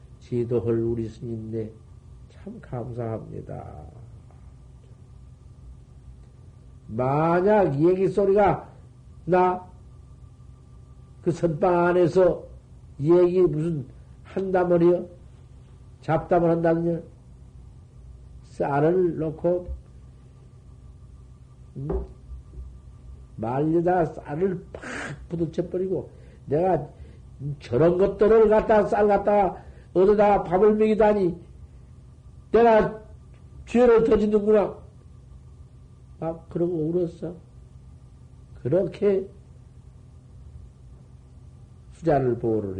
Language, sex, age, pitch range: Korean, male, 50-69, 110-180 Hz